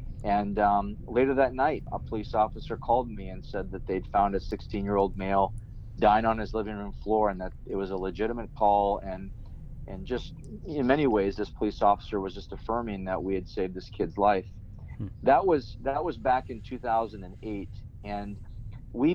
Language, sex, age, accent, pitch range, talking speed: English, male, 40-59, American, 100-115 Hz, 185 wpm